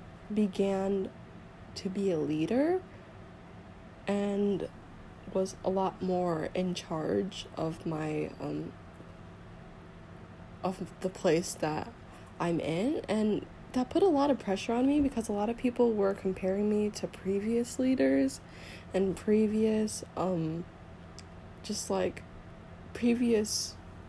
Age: 10-29